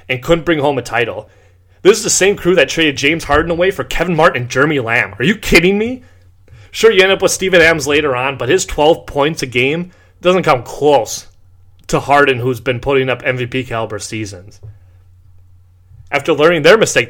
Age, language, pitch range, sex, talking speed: 30-49, English, 95-150 Hz, male, 200 wpm